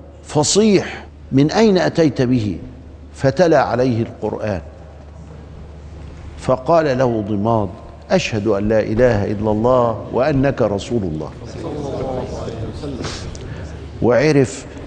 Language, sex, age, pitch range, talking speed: Arabic, male, 50-69, 105-150 Hz, 85 wpm